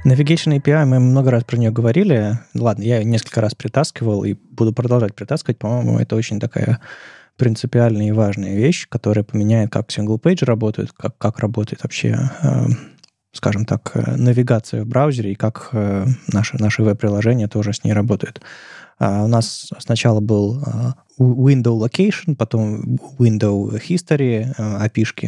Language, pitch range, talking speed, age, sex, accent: Russian, 105-135 Hz, 145 wpm, 20-39, male, native